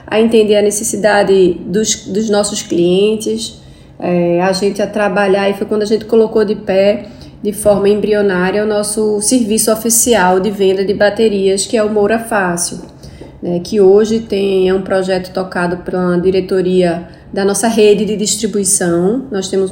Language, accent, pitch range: Portuguese, Brazilian, 190-220 Hz